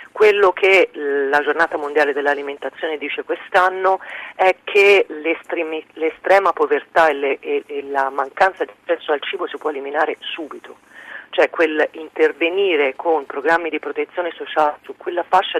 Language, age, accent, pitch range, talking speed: Italian, 40-59, native, 140-200 Hz, 130 wpm